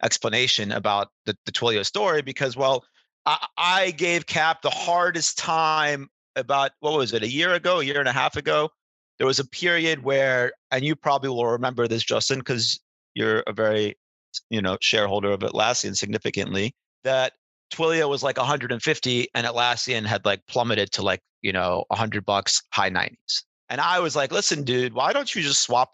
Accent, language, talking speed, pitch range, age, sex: American, English, 185 wpm, 110-145 Hz, 30-49, male